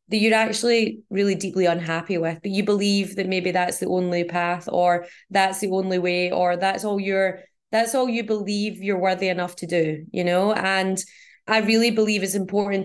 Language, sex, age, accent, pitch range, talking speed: English, female, 20-39, British, 180-210 Hz, 195 wpm